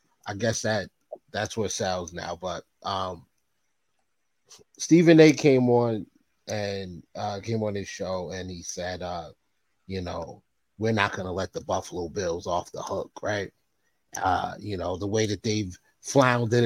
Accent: American